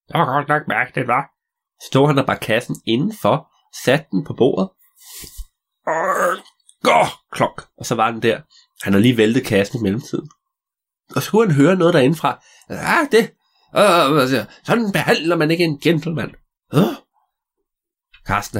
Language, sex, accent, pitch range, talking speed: Danish, male, native, 125-190 Hz, 155 wpm